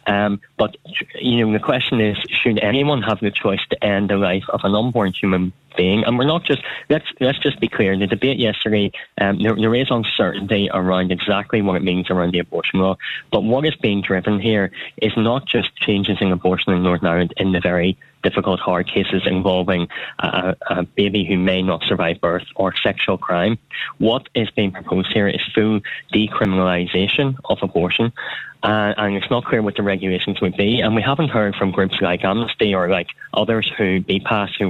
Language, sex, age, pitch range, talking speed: English, male, 10-29, 95-110 Hz, 195 wpm